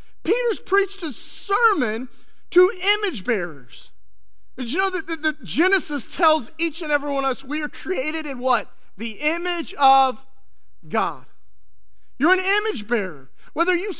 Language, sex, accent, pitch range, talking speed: English, male, American, 235-350 Hz, 155 wpm